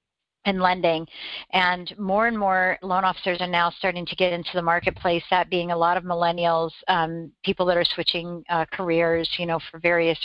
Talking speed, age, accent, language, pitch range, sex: 195 wpm, 50-69, American, English, 175-205 Hz, female